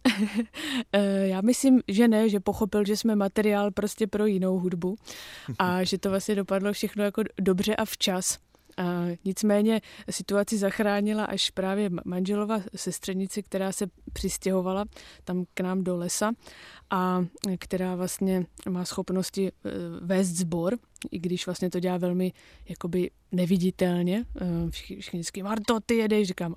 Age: 20-39